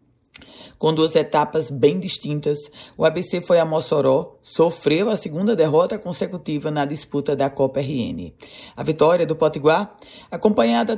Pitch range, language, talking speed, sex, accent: 135-175 Hz, Portuguese, 135 wpm, female, Brazilian